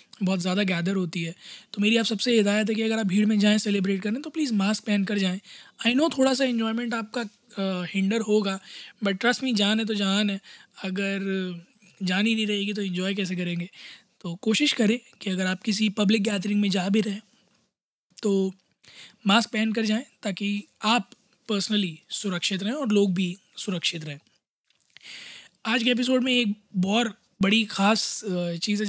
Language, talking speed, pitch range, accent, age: Hindi, 185 wpm, 195-225 Hz, native, 20-39